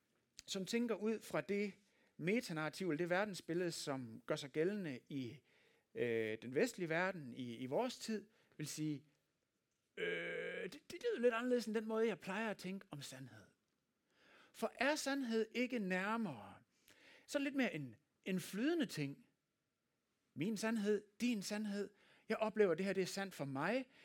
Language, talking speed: Danish, 155 wpm